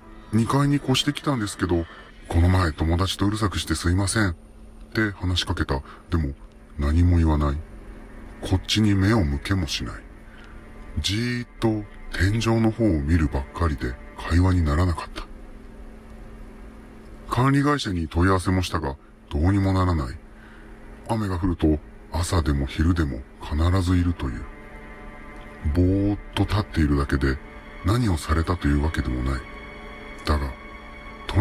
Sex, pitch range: female, 75-105 Hz